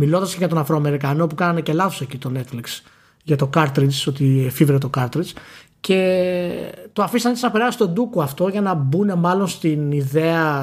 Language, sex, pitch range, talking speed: Greek, male, 140-200 Hz, 185 wpm